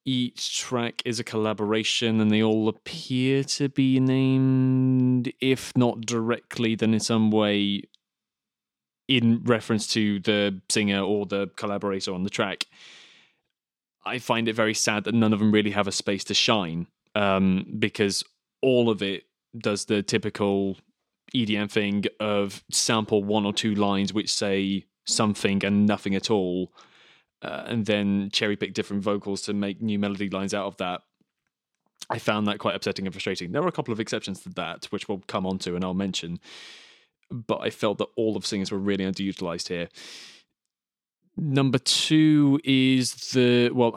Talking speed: 165 wpm